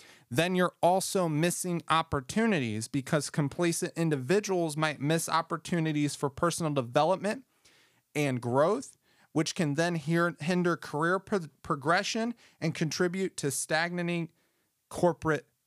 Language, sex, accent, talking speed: English, male, American, 105 wpm